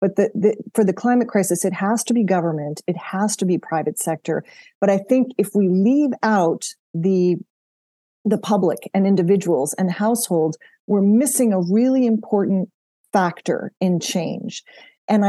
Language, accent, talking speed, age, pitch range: English, American, 160 wpm, 40-59, 175-215 Hz